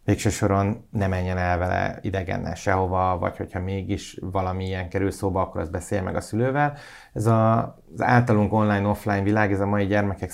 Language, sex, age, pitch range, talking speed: Hungarian, male, 30-49, 90-105 Hz, 170 wpm